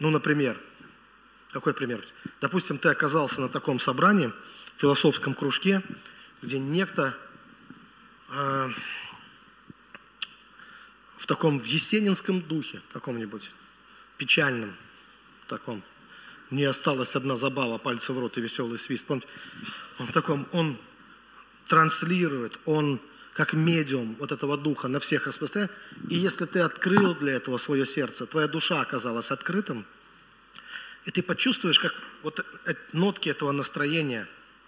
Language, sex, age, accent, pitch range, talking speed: Russian, male, 40-59, native, 135-170 Hz, 120 wpm